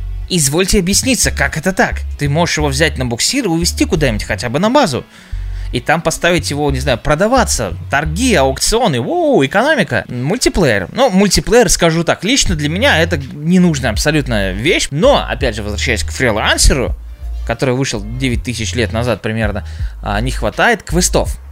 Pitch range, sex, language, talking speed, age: 95-155 Hz, male, Russian, 155 wpm, 20-39